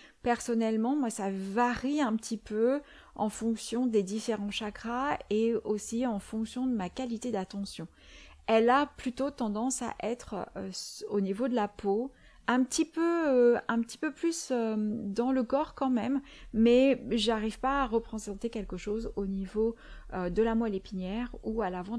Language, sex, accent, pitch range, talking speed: French, female, French, 200-245 Hz, 165 wpm